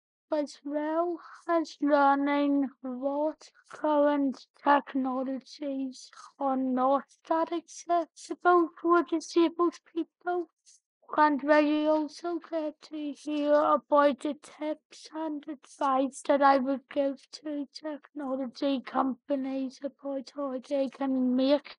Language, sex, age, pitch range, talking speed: English, female, 20-39, 255-305 Hz, 105 wpm